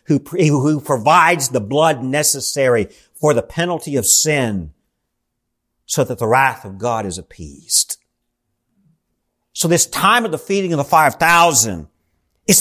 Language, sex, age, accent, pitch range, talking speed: English, male, 50-69, American, 145-225 Hz, 145 wpm